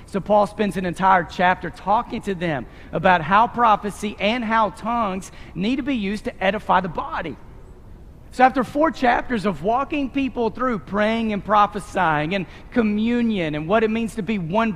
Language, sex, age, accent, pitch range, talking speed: English, male, 40-59, American, 155-220 Hz, 175 wpm